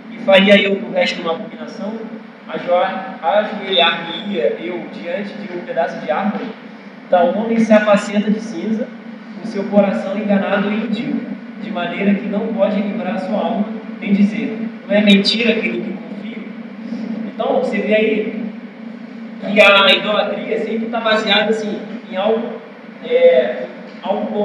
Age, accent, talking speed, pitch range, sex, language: 20-39, Brazilian, 145 wpm, 205-230 Hz, male, Portuguese